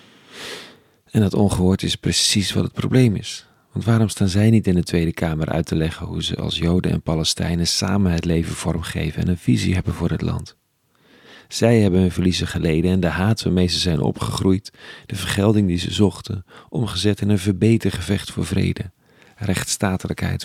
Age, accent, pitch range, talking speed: 40-59, Dutch, 85-105 Hz, 185 wpm